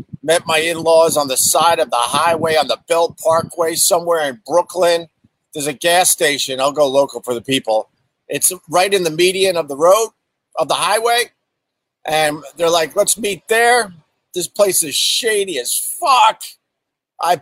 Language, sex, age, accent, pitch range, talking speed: English, male, 50-69, American, 140-195 Hz, 170 wpm